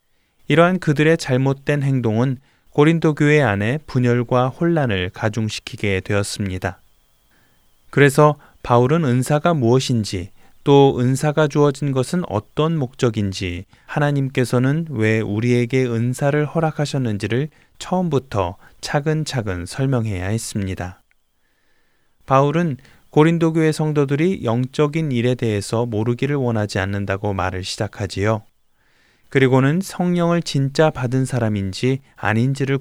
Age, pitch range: 20-39, 105-150 Hz